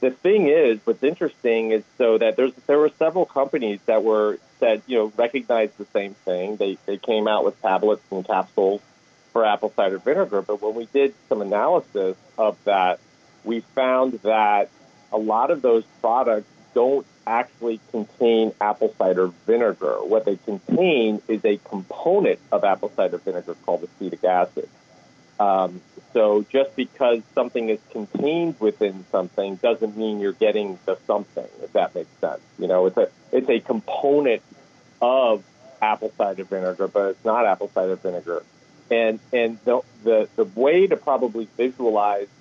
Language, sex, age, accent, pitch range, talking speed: English, male, 40-59, American, 105-150 Hz, 160 wpm